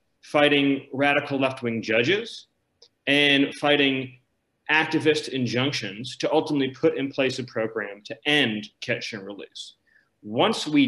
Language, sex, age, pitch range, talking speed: English, male, 30-49, 125-155 Hz, 120 wpm